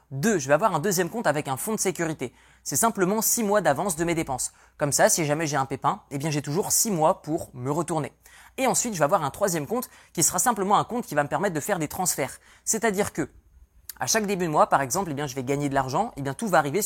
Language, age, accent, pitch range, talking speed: French, 20-39, French, 140-190 Hz, 280 wpm